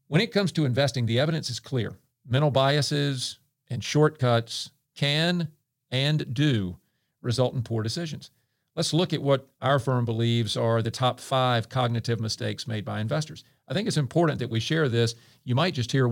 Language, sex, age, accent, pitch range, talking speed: English, male, 50-69, American, 120-150 Hz, 180 wpm